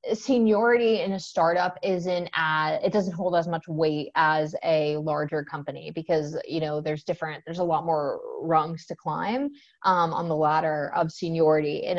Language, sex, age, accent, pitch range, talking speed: English, female, 20-39, American, 165-230 Hz, 165 wpm